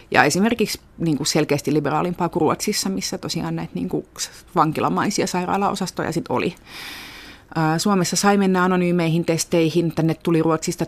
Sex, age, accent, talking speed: female, 30-49, native, 140 wpm